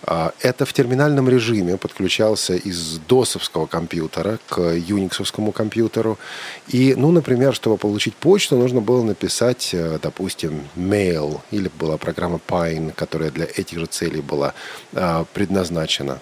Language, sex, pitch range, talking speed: Russian, male, 90-125 Hz, 120 wpm